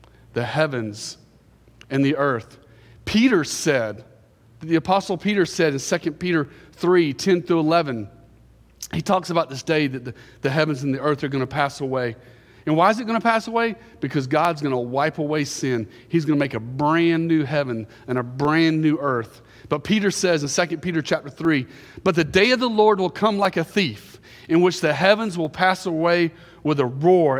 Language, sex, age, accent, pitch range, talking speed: English, male, 40-59, American, 135-175 Hz, 200 wpm